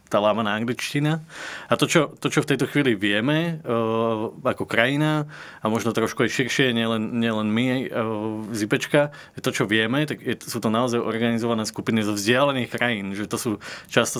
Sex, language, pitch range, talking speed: male, Slovak, 105-120 Hz, 185 wpm